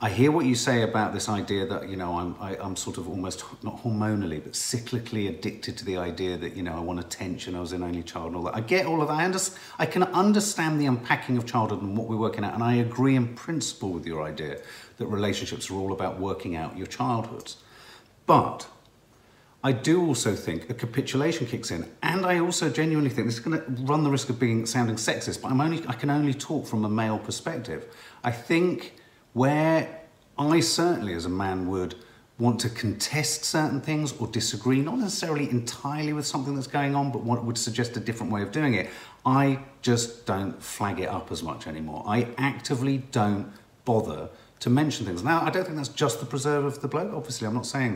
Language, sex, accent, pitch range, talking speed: English, male, British, 105-145 Hz, 220 wpm